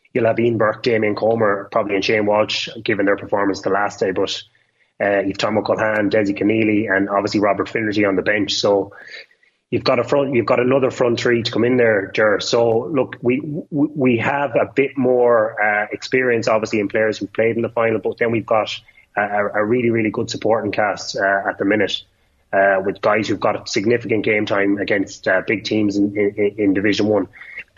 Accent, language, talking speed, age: Irish, English, 210 wpm, 20-39